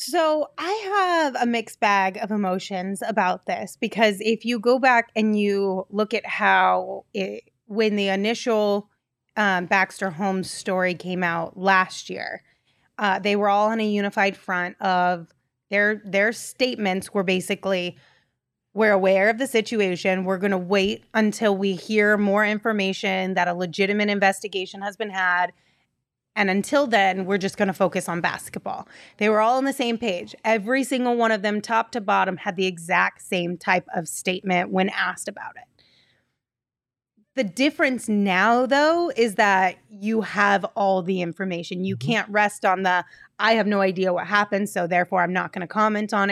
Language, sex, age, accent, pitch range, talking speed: English, female, 20-39, American, 185-220 Hz, 170 wpm